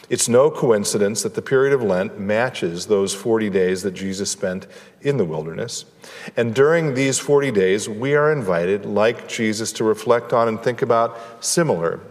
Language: English